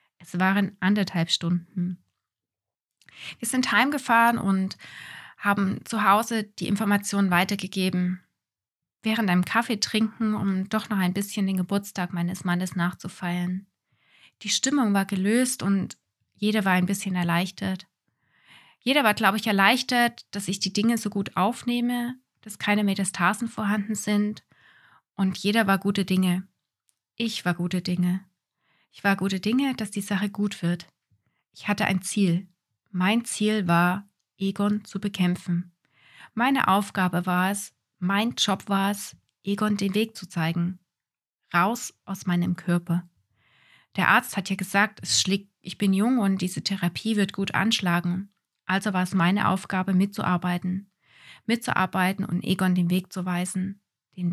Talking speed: 145 wpm